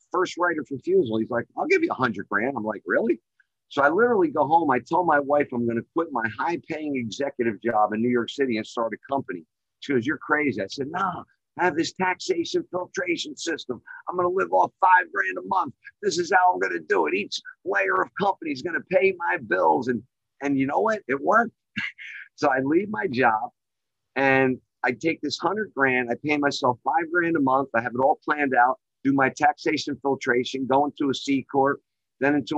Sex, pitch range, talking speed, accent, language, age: male, 125-165 Hz, 225 wpm, American, English, 50-69